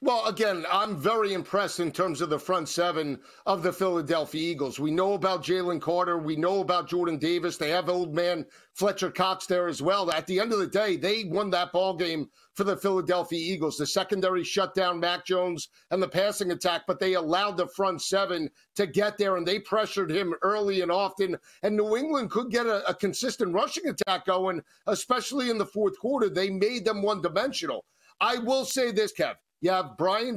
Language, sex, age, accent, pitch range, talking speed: English, male, 50-69, American, 180-210 Hz, 200 wpm